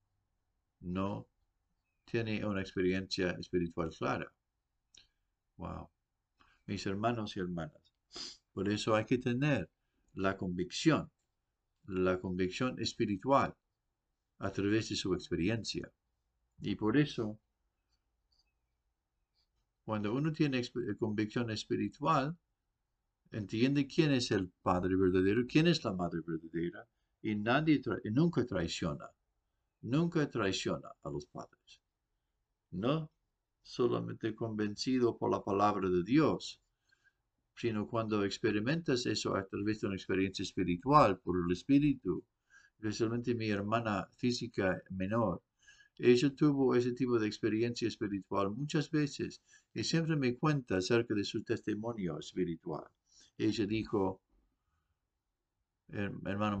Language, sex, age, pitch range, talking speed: English, male, 50-69, 95-120 Hz, 105 wpm